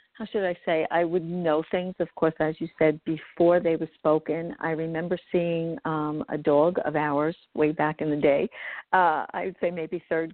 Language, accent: English, American